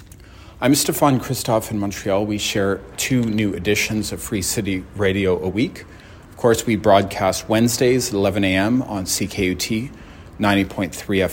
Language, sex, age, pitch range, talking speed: English, male, 30-49, 95-110 Hz, 145 wpm